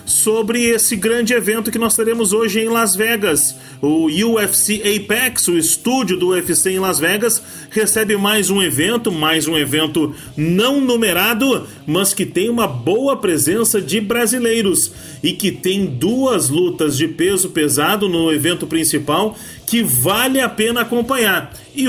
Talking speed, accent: 150 wpm, Brazilian